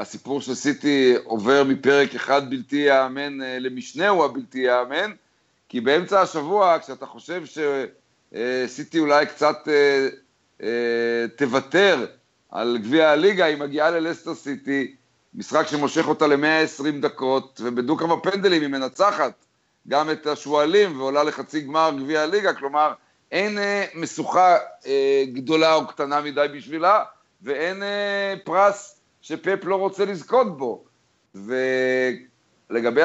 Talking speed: 115 wpm